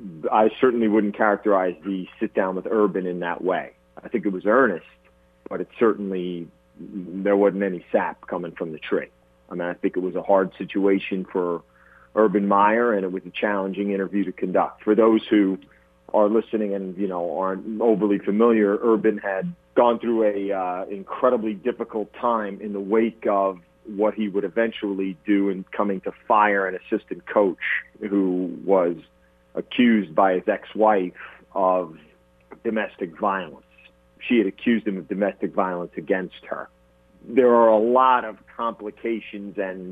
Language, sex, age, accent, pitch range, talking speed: English, male, 40-59, American, 90-110 Hz, 165 wpm